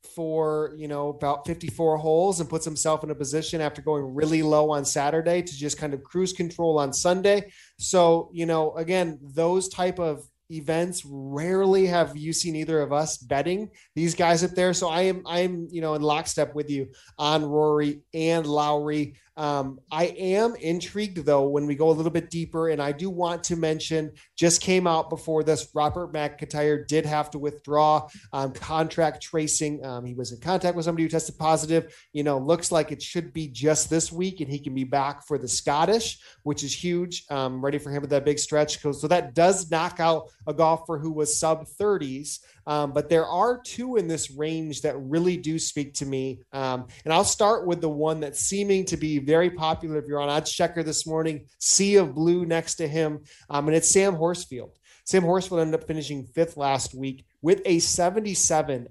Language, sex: English, male